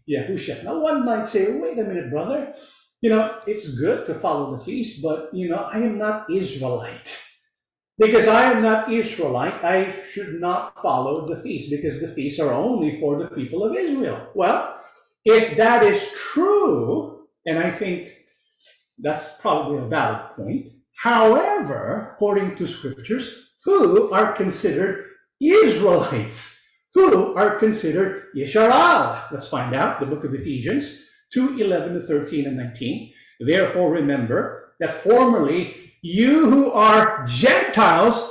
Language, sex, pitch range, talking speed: English, male, 155-230 Hz, 145 wpm